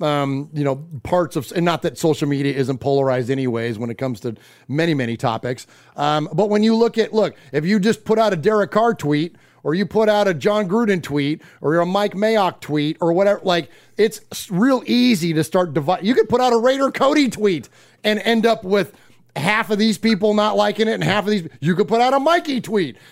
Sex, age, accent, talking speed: male, 30-49, American, 230 wpm